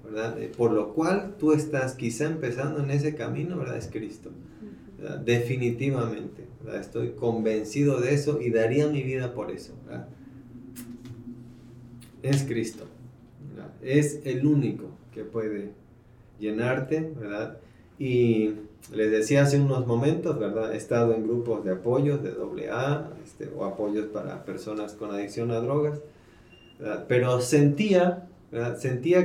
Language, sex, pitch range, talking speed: Spanish, male, 115-145 Hz, 135 wpm